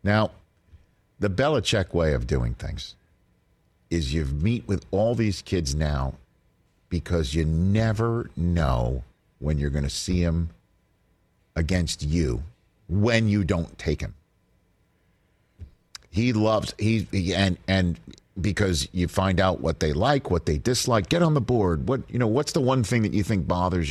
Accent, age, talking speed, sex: American, 50-69, 160 wpm, male